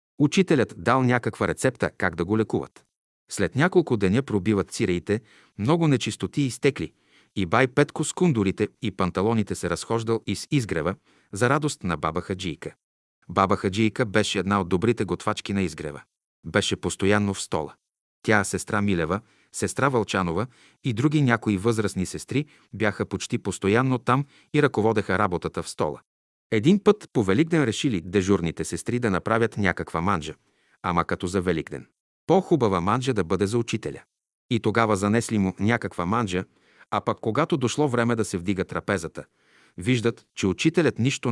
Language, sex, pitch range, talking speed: Bulgarian, male, 95-120 Hz, 155 wpm